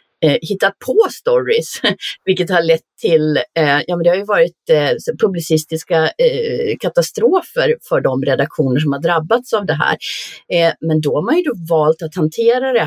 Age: 30-49